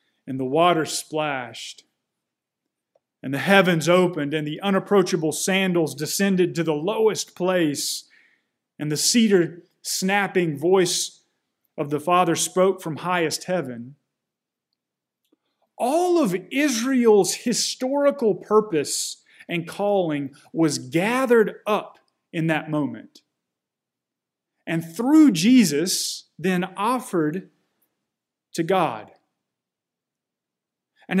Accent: American